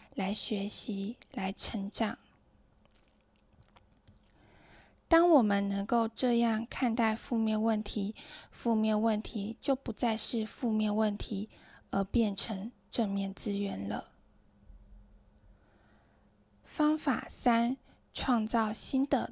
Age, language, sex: 10-29, Chinese, female